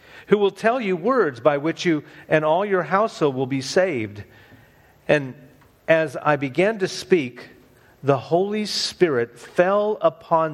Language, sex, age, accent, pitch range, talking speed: English, male, 50-69, American, 120-170 Hz, 150 wpm